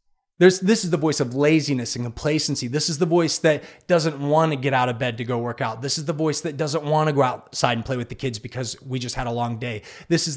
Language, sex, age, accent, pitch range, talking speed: English, male, 30-49, American, 135-165 Hz, 285 wpm